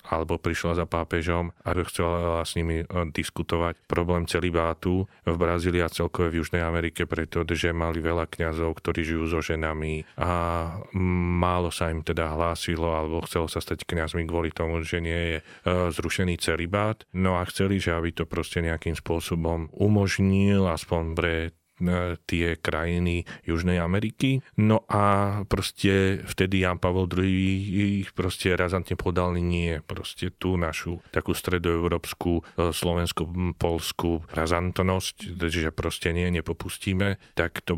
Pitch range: 85-95 Hz